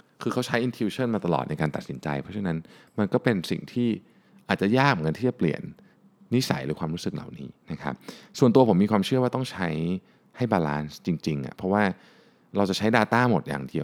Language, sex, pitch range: Thai, male, 80-115 Hz